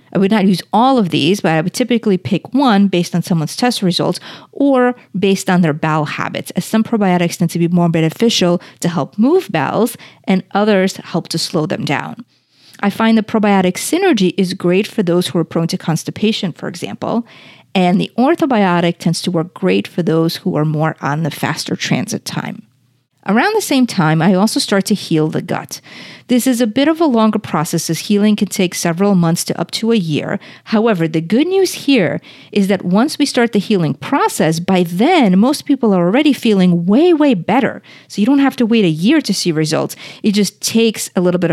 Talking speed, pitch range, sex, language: 210 wpm, 165-225 Hz, female, English